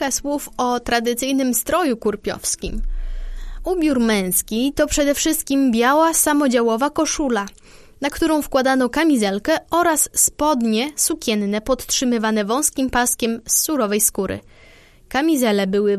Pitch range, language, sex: 225-300 Hz, Polish, female